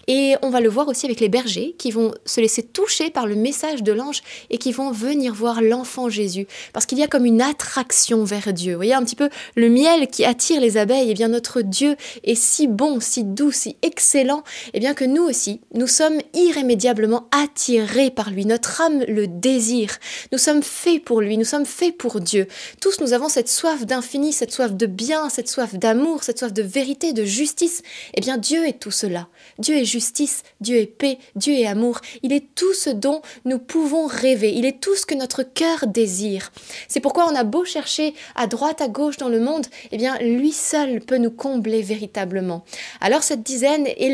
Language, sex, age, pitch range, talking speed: French, female, 20-39, 230-290 Hz, 215 wpm